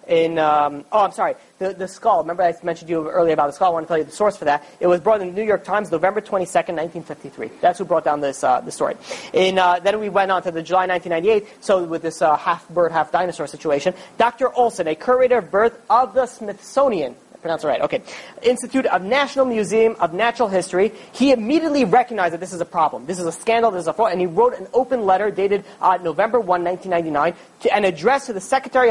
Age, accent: 30-49, American